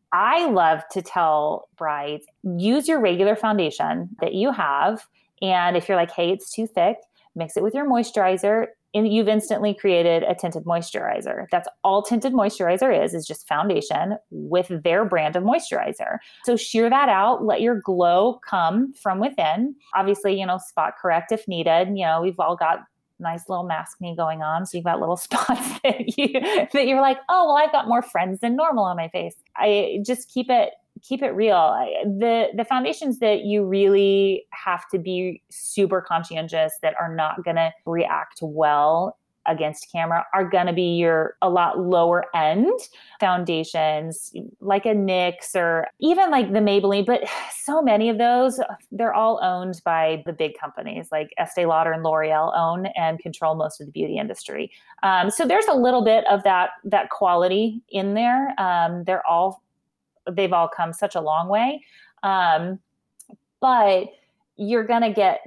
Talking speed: 175 wpm